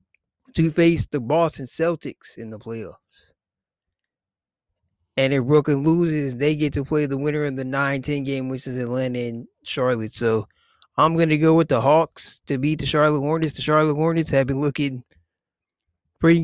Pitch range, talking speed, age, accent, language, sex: 115-150 Hz, 170 wpm, 20-39, American, English, male